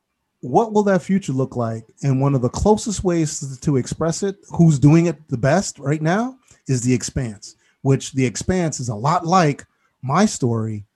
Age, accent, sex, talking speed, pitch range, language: 30-49, American, male, 190 wpm, 125-165 Hz, English